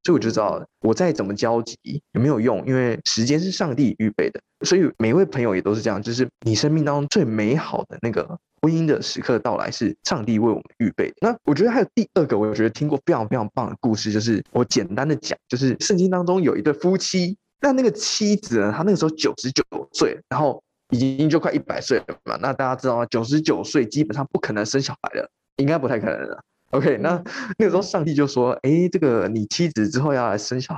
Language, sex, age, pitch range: Chinese, male, 20-39, 110-160 Hz